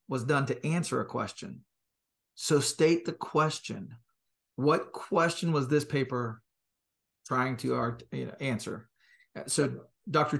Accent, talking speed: American, 115 wpm